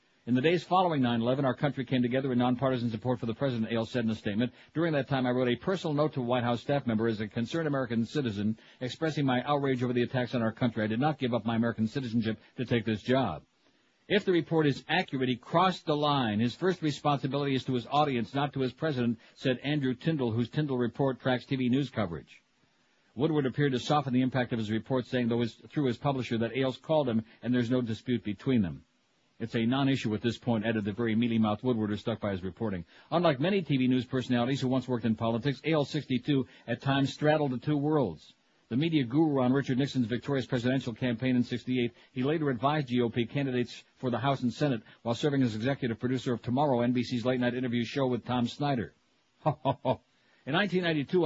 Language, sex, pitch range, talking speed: English, male, 120-140 Hz, 215 wpm